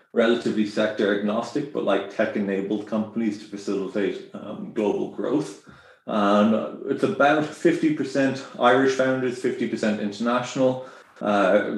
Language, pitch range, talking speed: English, 105-115 Hz, 105 wpm